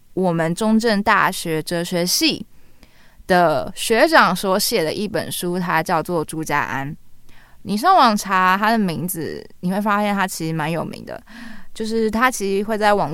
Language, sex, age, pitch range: Chinese, female, 20-39, 170-230 Hz